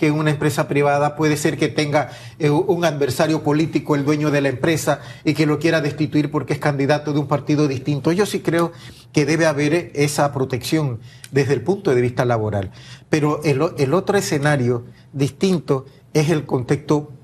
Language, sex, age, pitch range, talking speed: Spanish, male, 40-59, 135-165 Hz, 180 wpm